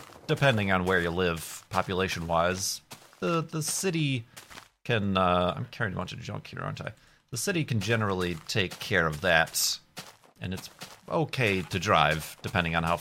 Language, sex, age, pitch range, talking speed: English, male, 30-49, 95-130 Hz, 170 wpm